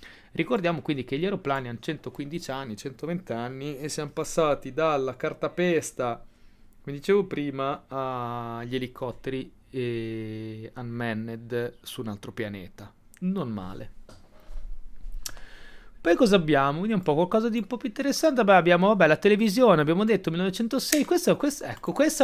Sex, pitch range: male, 120-205 Hz